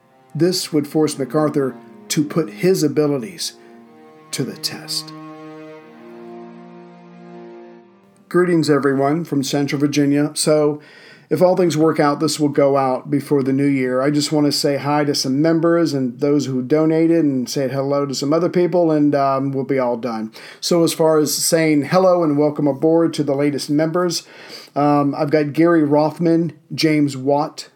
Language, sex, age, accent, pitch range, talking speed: English, male, 50-69, American, 145-160 Hz, 165 wpm